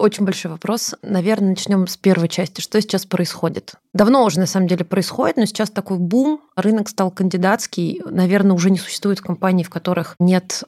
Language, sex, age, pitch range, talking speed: Russian, female, 20-39, 180-205 Hz, 180 wpm